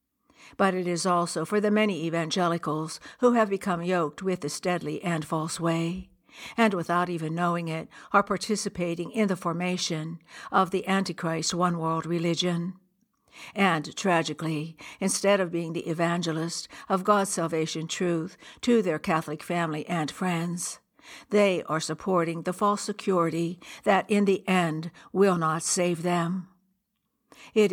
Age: 60-79